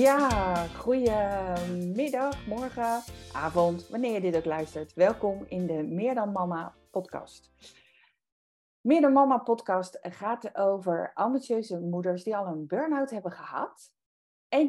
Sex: female